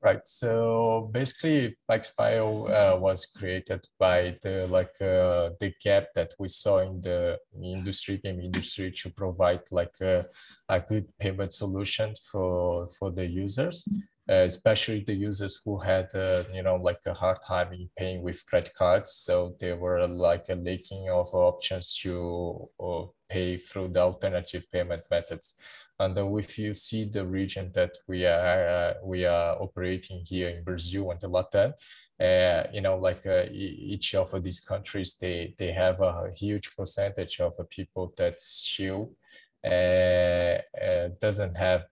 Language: English